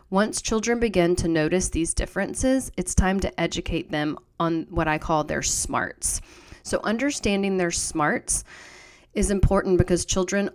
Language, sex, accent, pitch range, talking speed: English, female, American, 160-190 Hz, 150 wpm